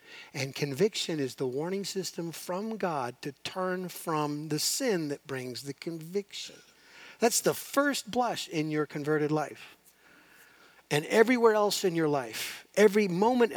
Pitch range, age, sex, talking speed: 135-185 Hz, 50-69, male, 145 wpm